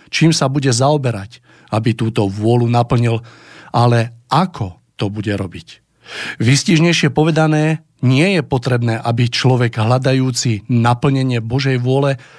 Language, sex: Slovak, male